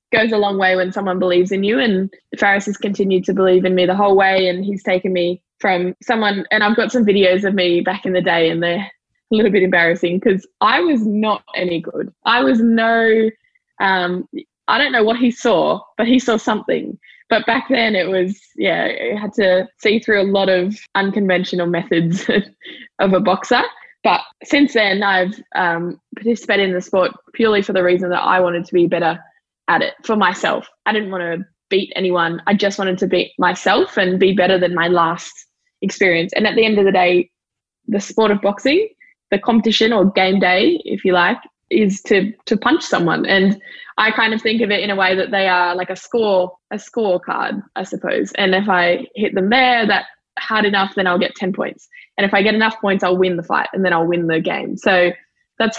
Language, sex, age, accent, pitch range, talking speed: English, female, 10-29, Australian, 185-220 Hz, 215 wpm